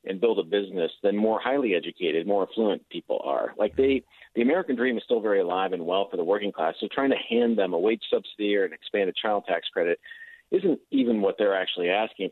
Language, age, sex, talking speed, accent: English, 40-59, male, 230 wpm, American